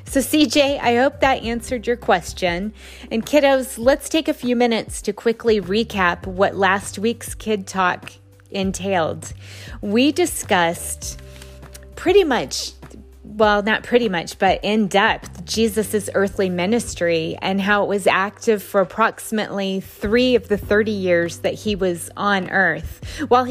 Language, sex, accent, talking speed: English, female, American, 145 wpm